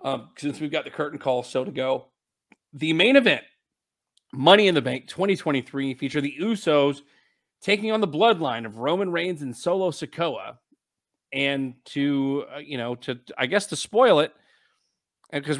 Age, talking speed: 40-59, 165 wpm